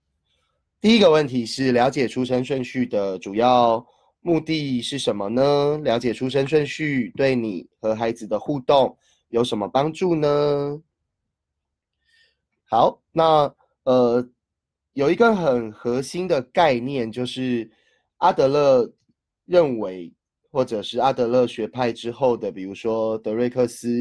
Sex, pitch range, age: male, 110-135 Hz, 20-39